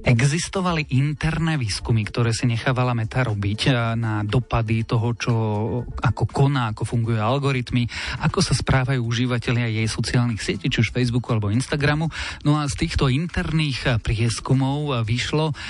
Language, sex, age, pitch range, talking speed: Slovak, male, 40-59, 115-135 Hz, 140 wpm